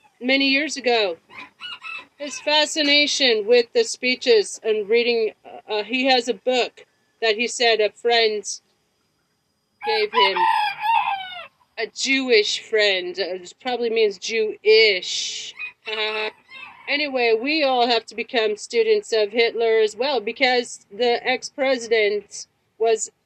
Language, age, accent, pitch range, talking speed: English, 40-59, American, 230-300 Hz, 115 wpm